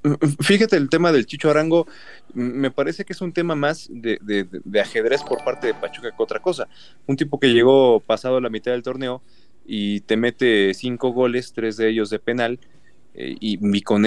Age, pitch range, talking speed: 30-49, 110-135 Hz, 200 wpm